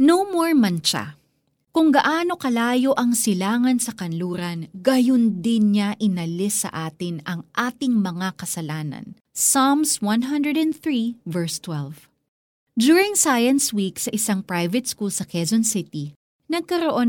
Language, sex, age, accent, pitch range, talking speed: Filipino, female, 30-49, native, 175-260 Hz, 125 wpm